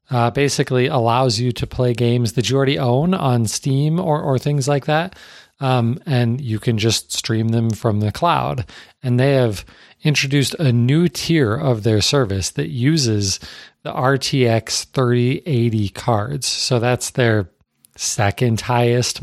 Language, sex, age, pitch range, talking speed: English, male, 40-59, 110-135 Hz, 155 wpm